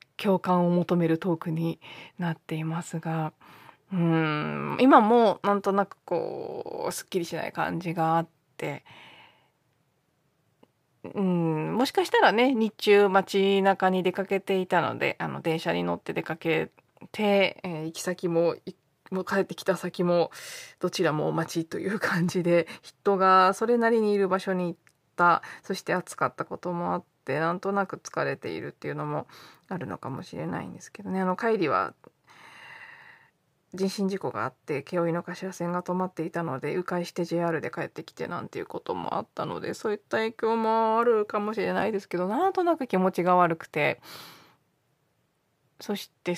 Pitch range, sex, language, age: 170-220 Hz, female, Japanese, 20-39